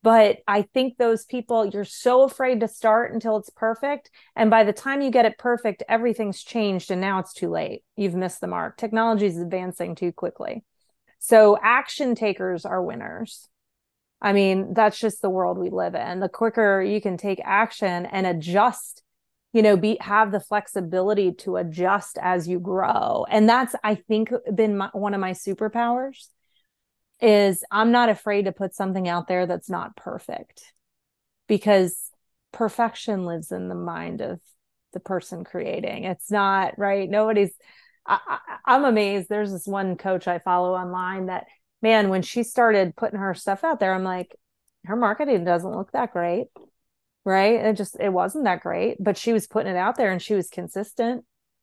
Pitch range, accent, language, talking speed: 190-230 Hz, American, English, 175 wpm